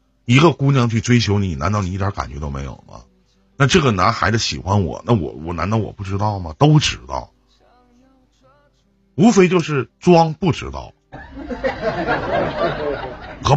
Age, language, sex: 50-69, Chinese, male